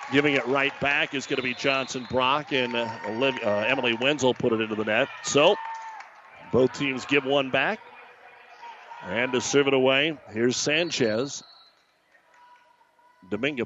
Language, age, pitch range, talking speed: English, 40-59, 130-160 Hz, 150 wpm